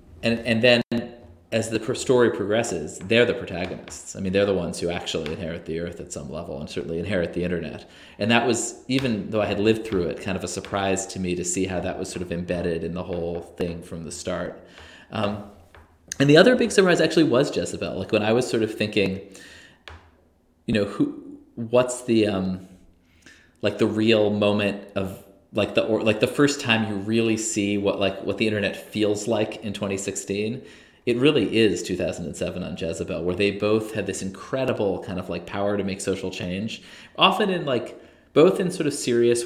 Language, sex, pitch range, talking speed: English, male, 90-110 Hz, 210 wpm